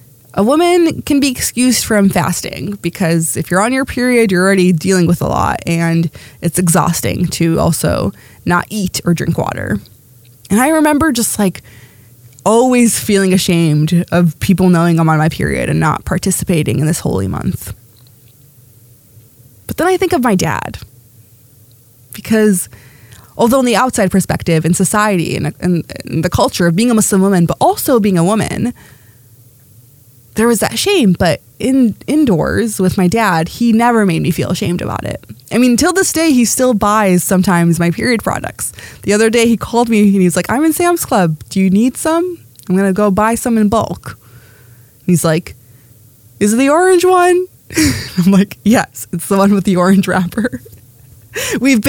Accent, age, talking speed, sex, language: American, 20-39, 175 wpm, female, English